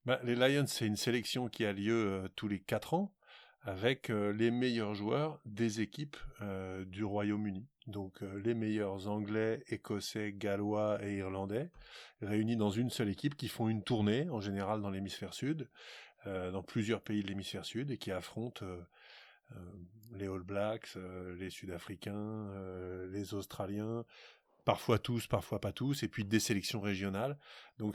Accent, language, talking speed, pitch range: French, French, 165 wpm, 100-115 Hz